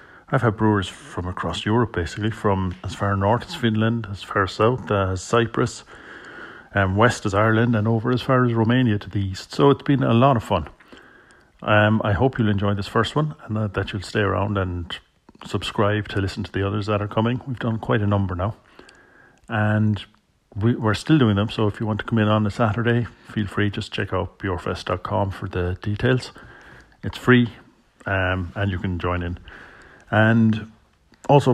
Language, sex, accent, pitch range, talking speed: English, male, Irish, 95-115 Hz, 200 wpm